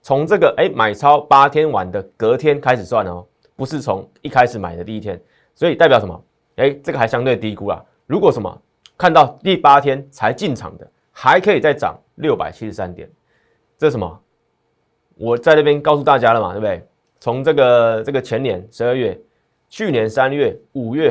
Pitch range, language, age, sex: 105-140 Hz, Chinese, 30-49, male